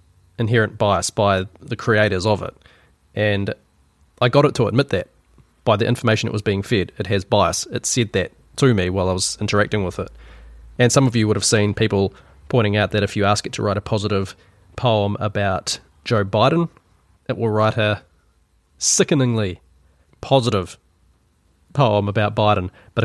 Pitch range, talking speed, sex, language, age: 95-120 Hz, 175 wpm, male, English, 20-39